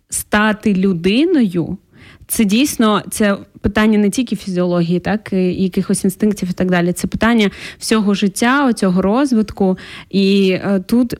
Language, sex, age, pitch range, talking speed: Ukrainian, female, 20-39, 195-230 Hz, 130 wpm